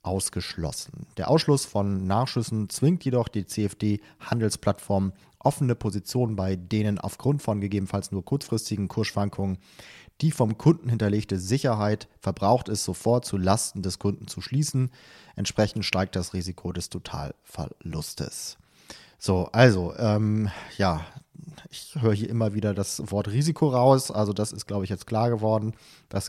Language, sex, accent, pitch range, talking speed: German, male, German, 95-120 Hz, 140 wpm